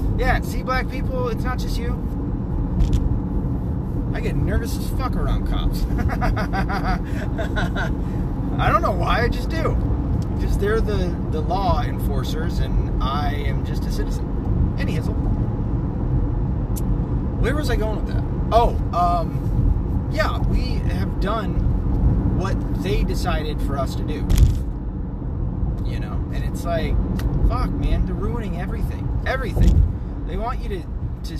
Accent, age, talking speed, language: American, 30-49, 135 wpm, English